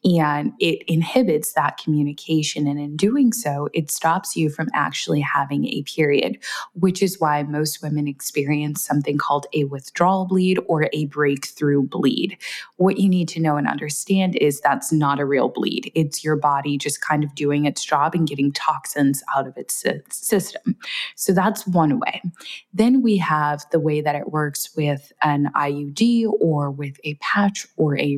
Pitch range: 145-180 Hz